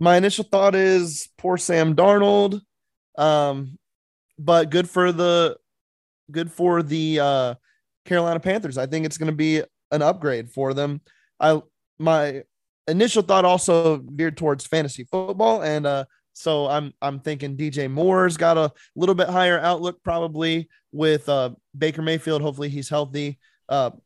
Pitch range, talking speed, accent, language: 145-170 Hz, 150 wpm, American, English